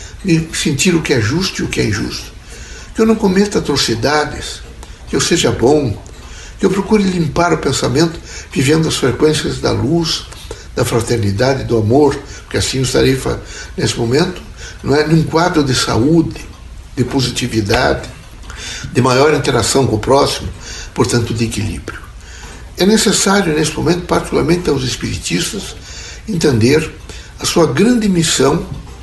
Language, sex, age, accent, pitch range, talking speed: Portuguese, male, 60-79, Brazilian, 105-165 Hz, 140 wpm